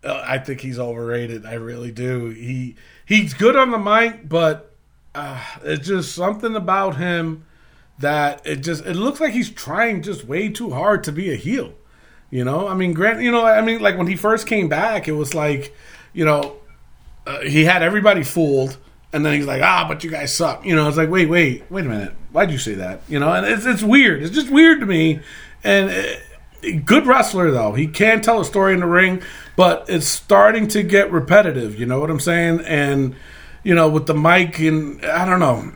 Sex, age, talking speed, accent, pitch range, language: male, 40-59, 220 wpm, American, 140-200 Hz, English